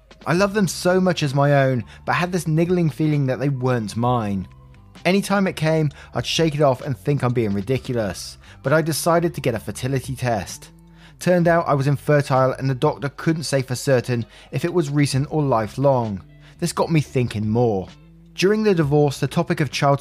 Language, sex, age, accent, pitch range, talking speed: English, male, 20-39, British, 120-155 Hz, 200 wpm